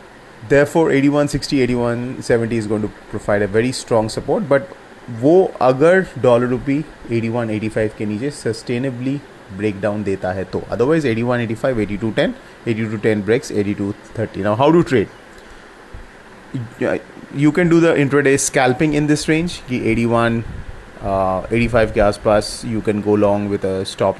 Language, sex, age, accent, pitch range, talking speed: English, male, 30-49, Indian, 105-135 Hz, 135 wpm